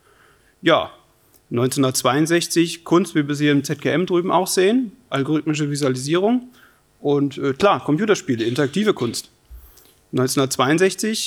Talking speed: 105 wpm